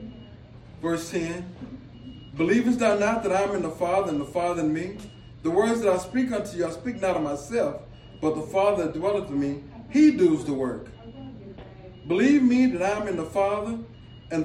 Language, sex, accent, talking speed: English, male, American, 200 wpm